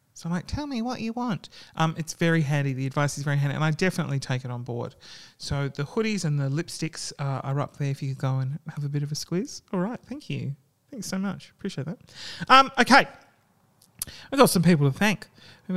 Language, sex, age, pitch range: English, male, 30-49, 145-220 Hz